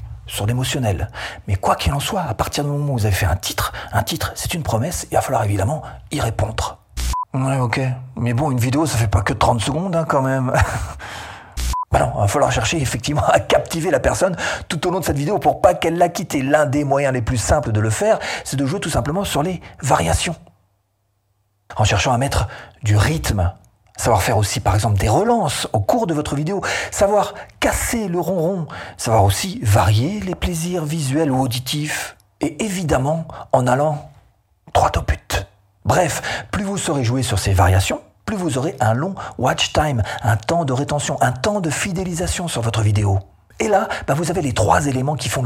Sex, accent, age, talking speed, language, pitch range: male, French, 40-59, 205 wpm, French, 105-150 Hz